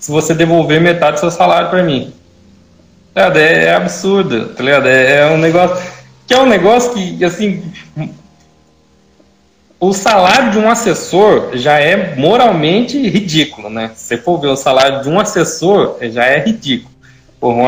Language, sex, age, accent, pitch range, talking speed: Portuguese, male, 20-39, Brazilian, 125-175 Hz, 145 wpm